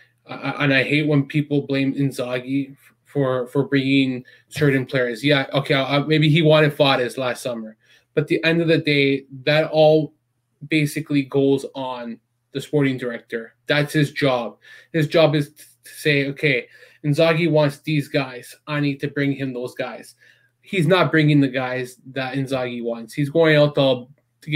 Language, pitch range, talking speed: English, 125-145 Hz, 170 wpm